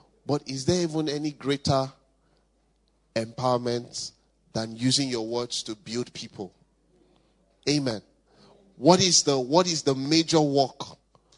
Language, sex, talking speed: English, male, 120 wpm